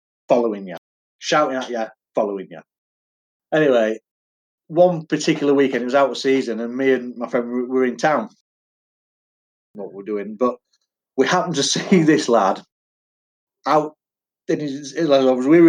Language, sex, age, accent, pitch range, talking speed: English, male, 40-59, British, 115-165 Hz, 145 wpm